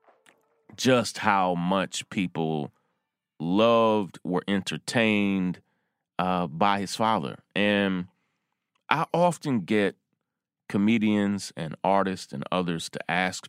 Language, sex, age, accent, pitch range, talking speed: English, male, 30-49, American, 90-115 Hz, 100 wpm